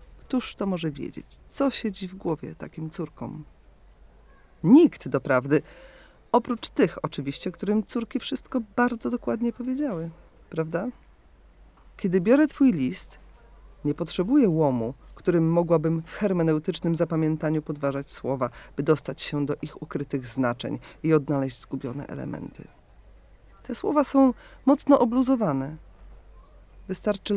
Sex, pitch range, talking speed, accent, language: female, 135-220 Hz, 115 wpm, native, Polish